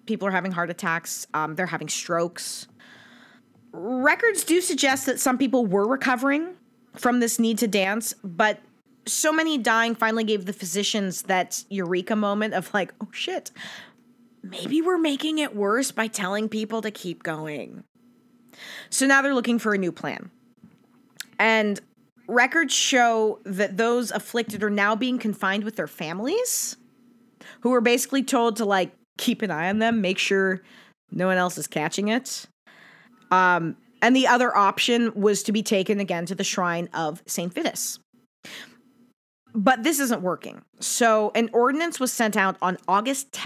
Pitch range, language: 195-245 Hz, English